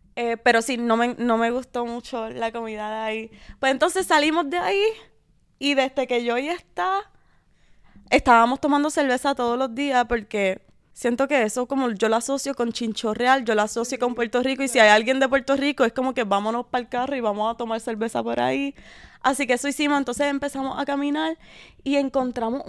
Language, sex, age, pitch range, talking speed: Spanish, female, 20-39, 225-275 Hz, 205 wpm